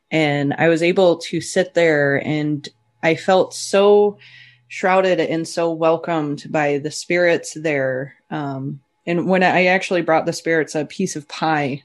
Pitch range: 150-180 Hz